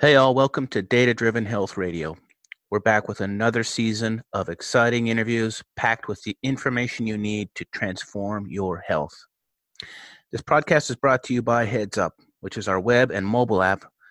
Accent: American